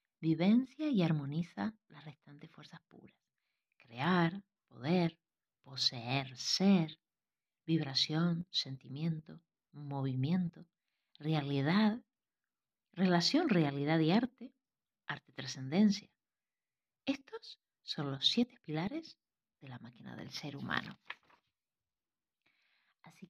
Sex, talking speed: female, 85 wpm